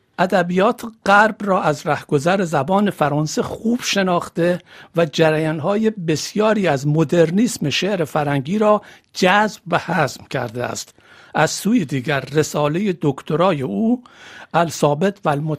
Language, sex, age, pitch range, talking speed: Persian, male, 60-79, 145-195 Hz, 110 wpm